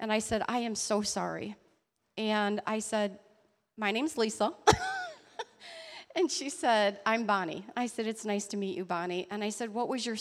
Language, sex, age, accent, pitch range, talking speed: English, female, 40-59, American, 205-240 Hz, 190 wpm